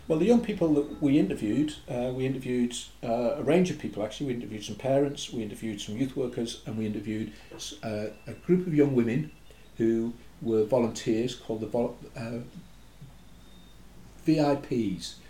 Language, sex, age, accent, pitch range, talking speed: English, male, 50-69, British, 105-140 Hz, 160 wpm